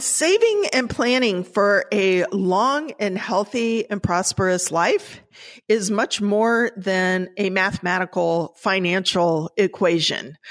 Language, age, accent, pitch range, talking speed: English, 50-69, American, 175-225 Hz, 110 wpm